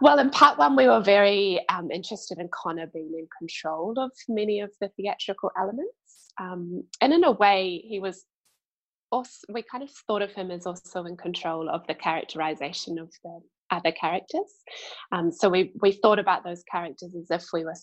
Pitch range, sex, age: 170-225 Hz, female, 20-39